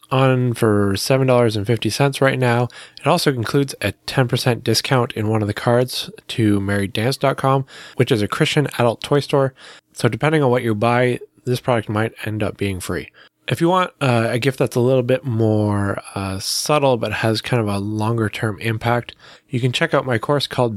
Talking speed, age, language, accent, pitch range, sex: 190 wpm, 20-39, English, American, 105-125 Hz, male